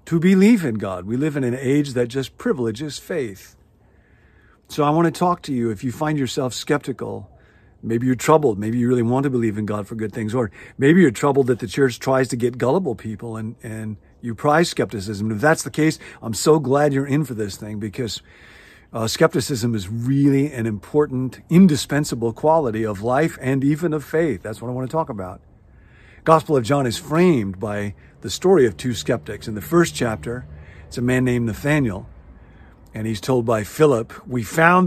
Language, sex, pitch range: English, male, 110-145 Hz